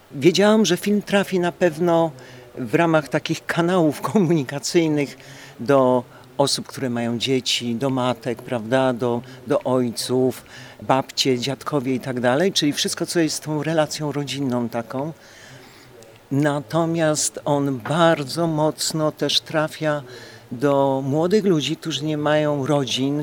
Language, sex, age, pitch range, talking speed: Polish, male, 50-69, 130-165 Hz, 120 wpm